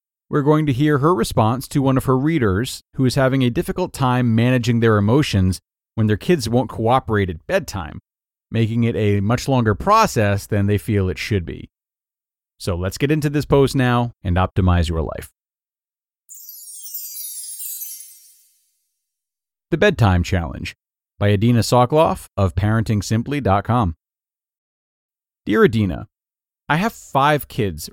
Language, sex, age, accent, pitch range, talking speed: English, male, 40-59, American, 100-145 Hz, 140 wpm